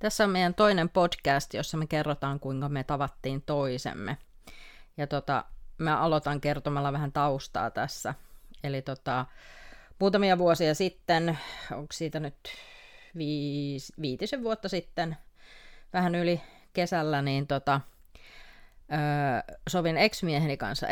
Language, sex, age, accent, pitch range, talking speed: Finnish, female, 30-49, native, 140-170 Hz, 120 wpm